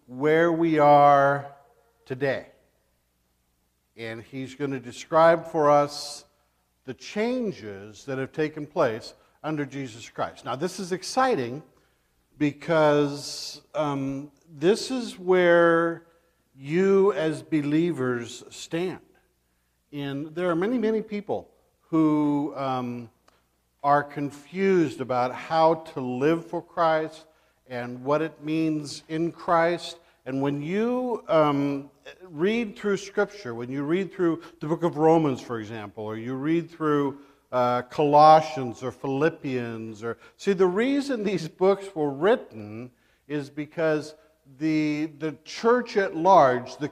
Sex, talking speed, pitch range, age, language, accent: male, 125 wpm, 135-170 Hz, 50-69, English, American